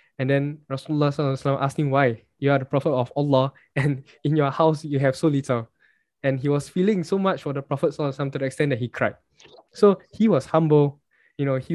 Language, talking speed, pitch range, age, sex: English, 220 wpm, 125-145 Hz, 10-29, male